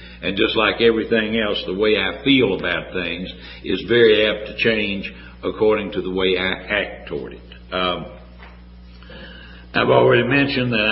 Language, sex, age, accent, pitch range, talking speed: English, male, 60-79, American, 90-115 Hz, 160 wpm